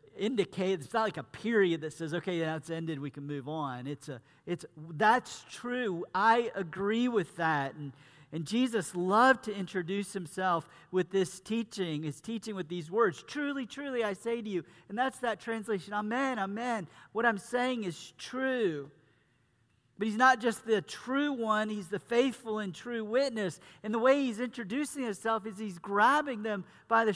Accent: American